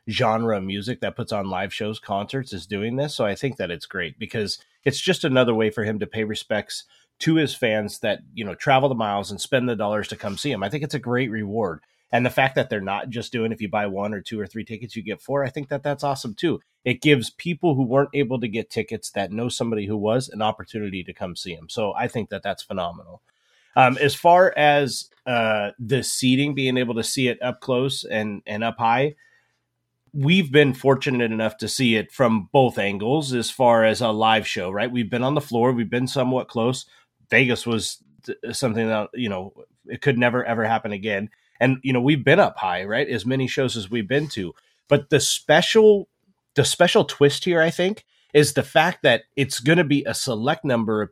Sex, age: male, 30-49